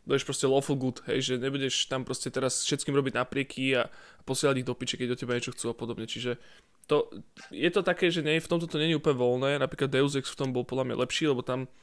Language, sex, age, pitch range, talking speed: Slovak, male, 20-39, 130-145 Hz, 250 wpm